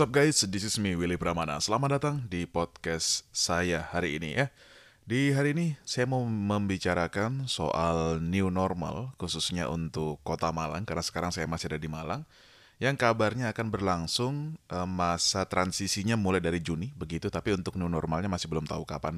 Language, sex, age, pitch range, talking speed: Indonesian, male, 20-39, 85-105 Hz, 170 wpm